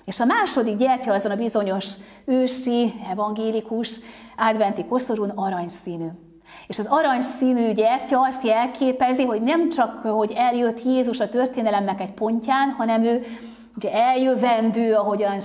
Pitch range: 200-245 Hz